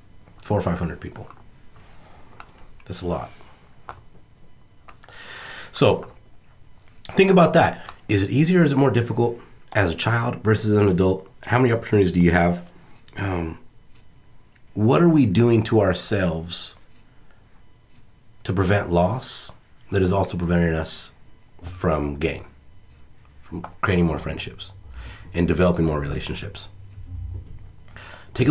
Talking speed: 120 wpm